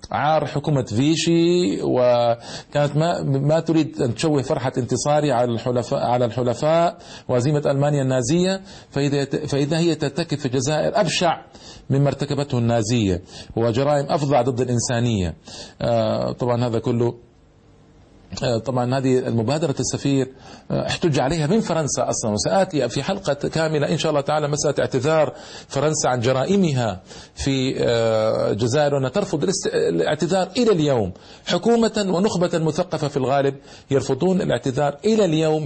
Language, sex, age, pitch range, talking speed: Arabic, male, 40-59, 125-165 Hz, 120 wpm